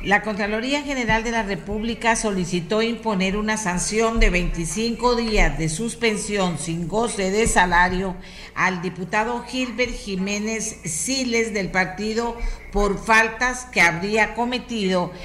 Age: 50-69